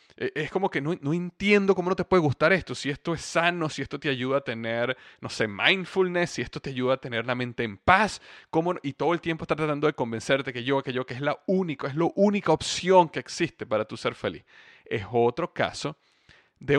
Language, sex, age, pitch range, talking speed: Spanish, male, 30-49, 125-165 Hz, 230 wpm